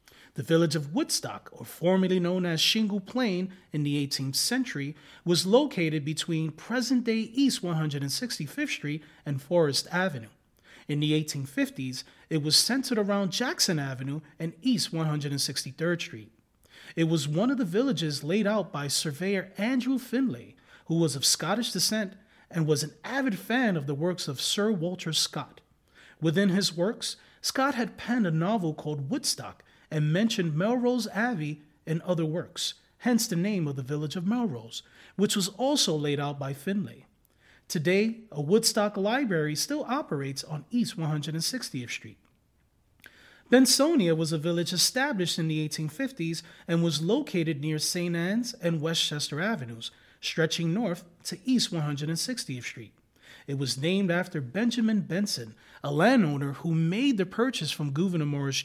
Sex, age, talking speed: male, 30-49, 150 wpm